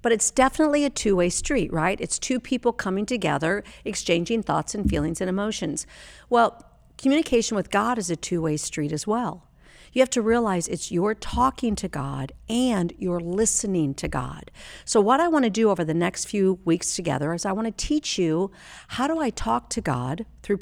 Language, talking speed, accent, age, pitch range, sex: English, 195 wpm, American, 50-69, 170-230 Hz, female